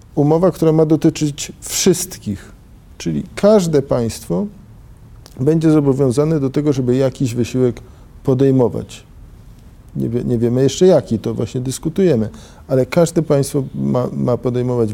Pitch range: 115-150 Hz